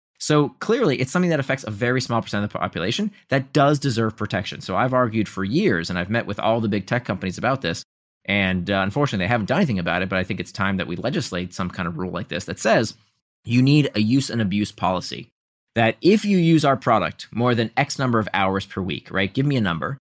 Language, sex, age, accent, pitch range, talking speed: English, male, 30-49, American, 110-160 Hz, 250 wpm